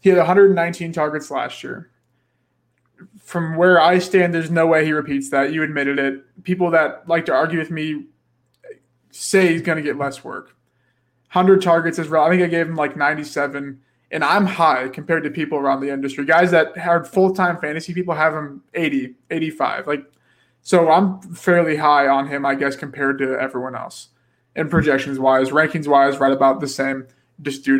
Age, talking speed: 20-39, 185 wpm